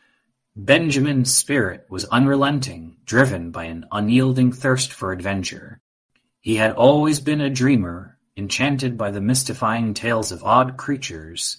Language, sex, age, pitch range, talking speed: English, male, 30-49, 100-130 Hz, 130 wpm